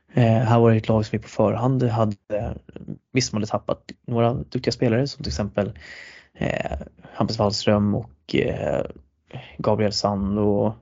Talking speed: 160 wpm